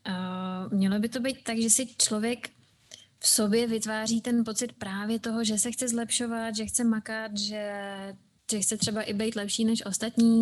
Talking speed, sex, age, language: 185 wpm, female, 20-39, Czech